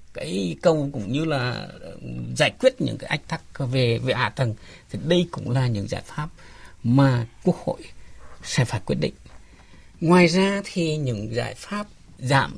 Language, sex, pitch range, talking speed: Vietnamese, male, 130-180 Hz, 175 wpm